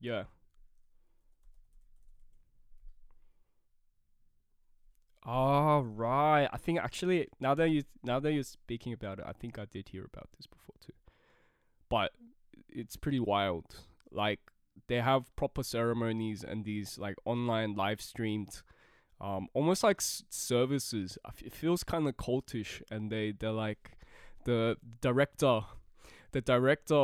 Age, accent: 20-39, Australian